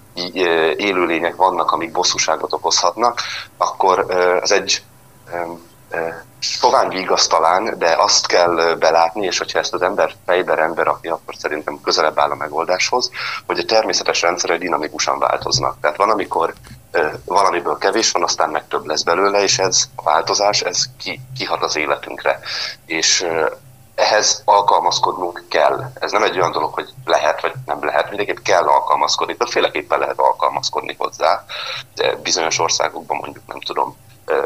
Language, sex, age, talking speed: Hungarian, male, 30-49, 140 wpm